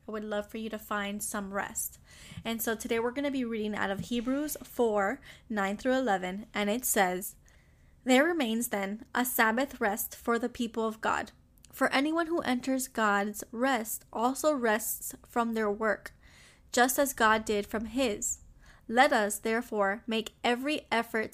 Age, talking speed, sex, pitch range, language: 10-29, 165 wpm, female, 215-255 Hz, English